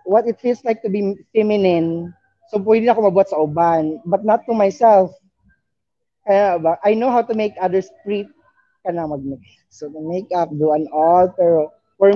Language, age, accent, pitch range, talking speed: English, 20-39, Filipino, 155-215 Hz, 145 wpm